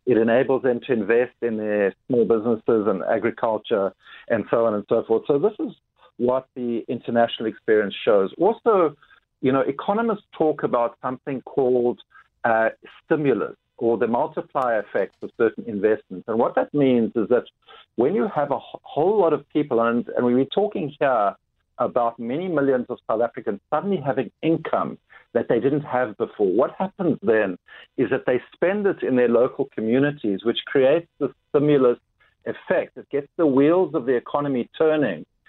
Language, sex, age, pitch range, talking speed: English, male, 50-69, 115-145 Hz, 170 wpm